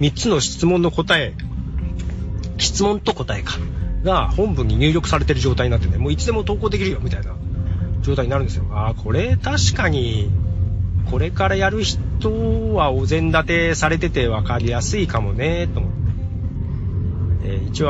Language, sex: Japanese, male